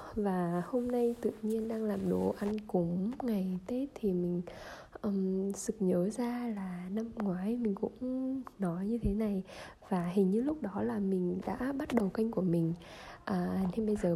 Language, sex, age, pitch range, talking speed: Vietnamese, female, 10-29, 190-235 Hz, 185 wpm